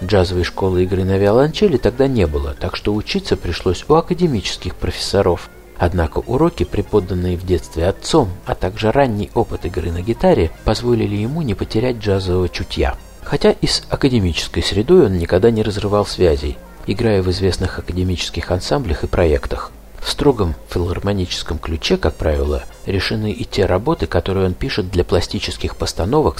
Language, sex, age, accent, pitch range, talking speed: Russian, male, 50-69, native, 90-115 Hz, 150 wpm